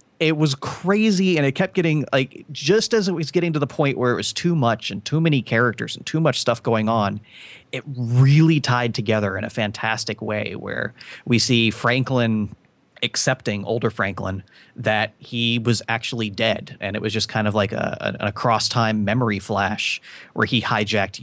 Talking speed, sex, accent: 185 wpm, male, American